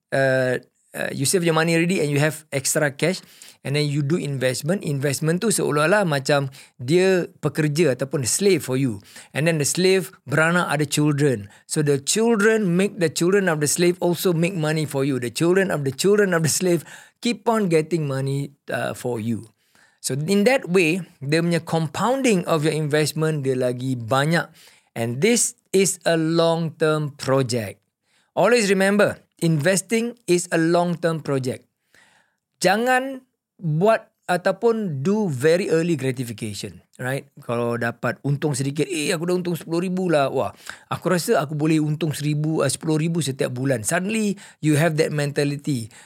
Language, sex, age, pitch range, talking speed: Malay, male, 50-69, 140-180 Hz, 160 wpm